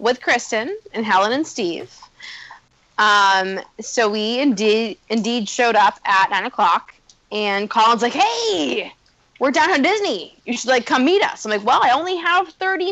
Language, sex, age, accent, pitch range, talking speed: English, female, 20-39, American, 210-275 Hz, 170 wpm